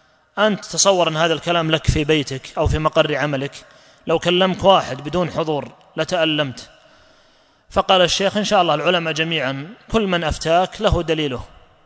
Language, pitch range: Arabic, 150-175 Hz